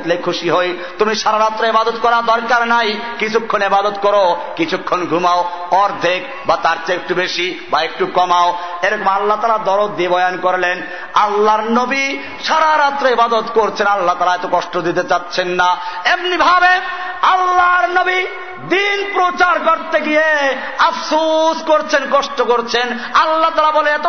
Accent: native